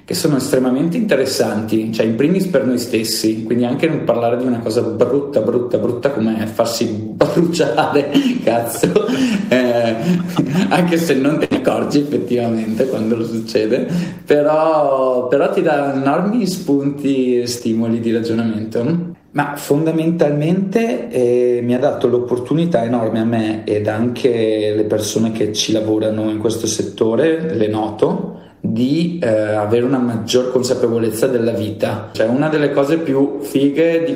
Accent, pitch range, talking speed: native, 115-150 Hz, 140 wpm